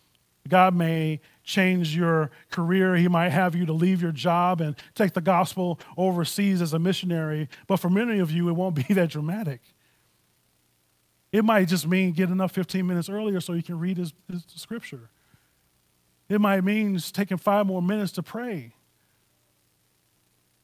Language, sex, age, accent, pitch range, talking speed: English, male, 30-49, American, 120-180 Hz, 165 wpm